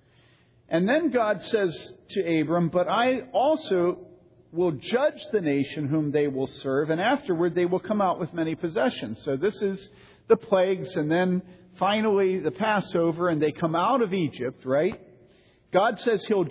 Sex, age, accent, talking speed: male, 50-69, American, 165 wpm